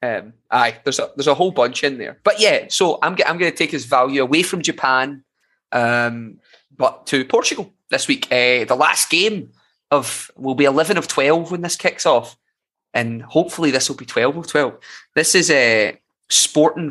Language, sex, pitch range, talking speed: English, male, 120-145 Hz, 200 wpm